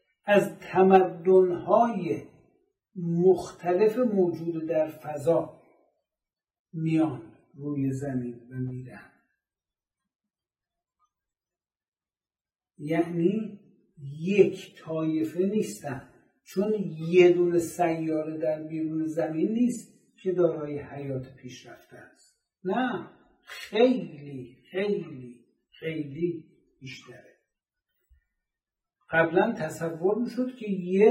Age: 60-79